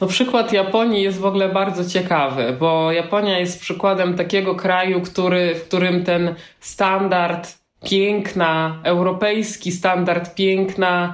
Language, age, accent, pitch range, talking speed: Polish, 20-39, native, 175-200 Hz, 115 wpm